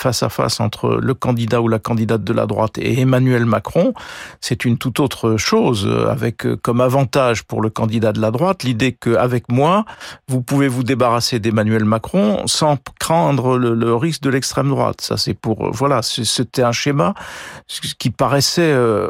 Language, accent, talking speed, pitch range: French, French, 175 wpm, 115-150 Hz